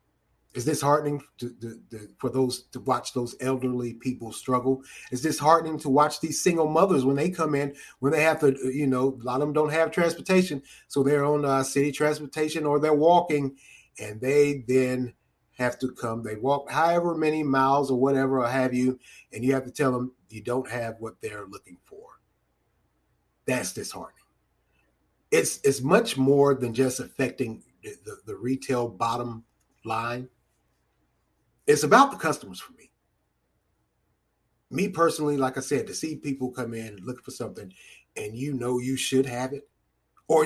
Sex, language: male, English